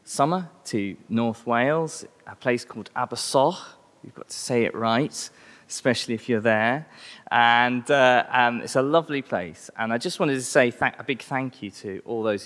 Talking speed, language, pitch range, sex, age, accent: 185 wpm, English, 100-135 Hz, male, 20-39, British